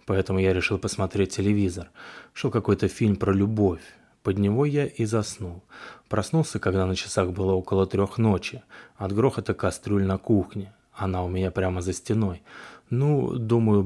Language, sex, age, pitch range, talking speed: Russian, male, 20-39, 95-110 Hz, 155 wpm